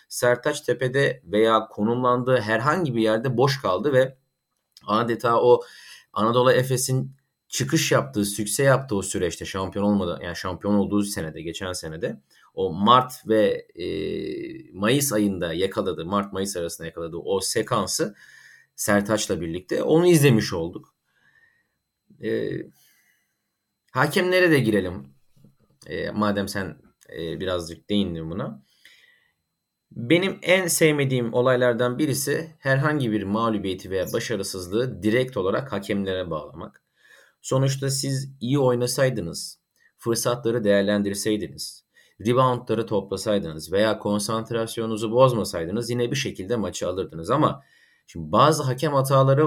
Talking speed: 110 wpm